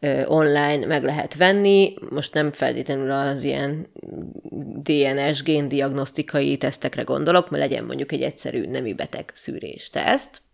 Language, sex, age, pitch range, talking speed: Hungarian, female, 20-39, 150-180 Hz, 120 wpm